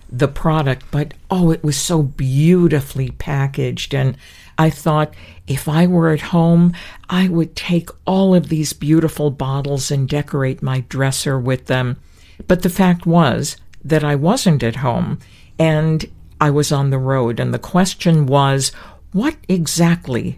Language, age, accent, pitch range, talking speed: English, 50-69, American, 135-170 Hz, 155 wpm